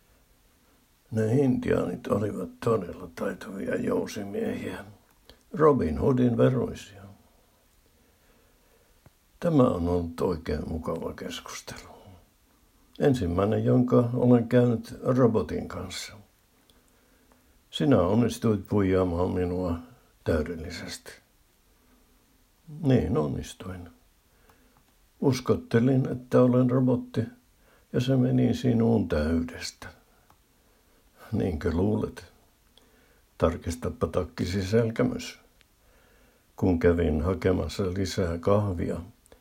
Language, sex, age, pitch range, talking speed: Finnish, male, 60-79, 85-120 Hz, 70 wpm